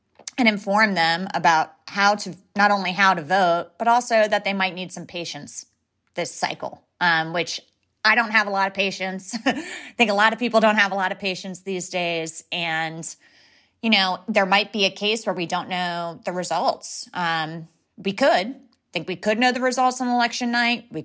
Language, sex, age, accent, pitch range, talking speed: English, female, 30-49, American, 165-205 Hz, 200 wpm